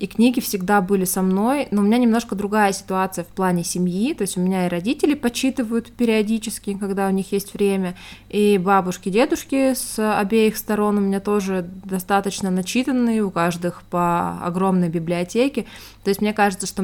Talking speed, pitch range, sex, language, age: 175 wpm, 175-205 Hz, female, Russian, 20-39